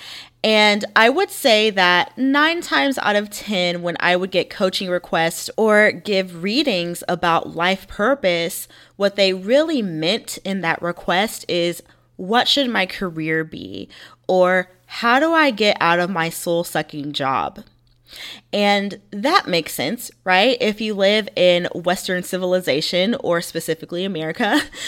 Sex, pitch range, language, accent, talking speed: female, 170-210 Hz, English, American, 140 wpm